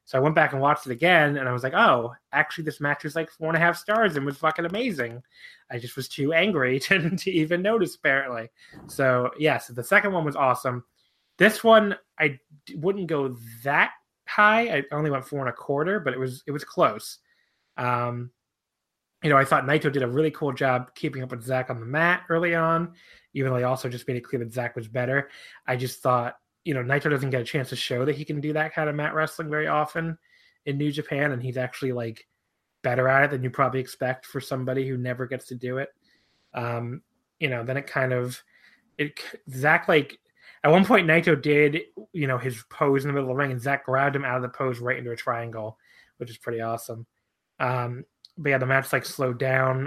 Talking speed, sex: 230 wpm, male